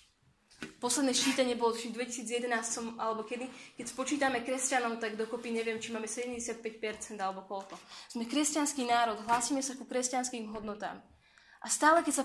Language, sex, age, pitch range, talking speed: Slovak, female, 20-39, 225-265 Hz, 145 wpm